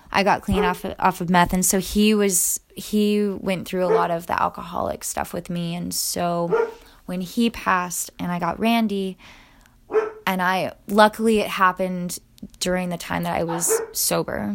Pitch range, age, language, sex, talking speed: 180-215 Hz, 20-39, English, female, 175 wpm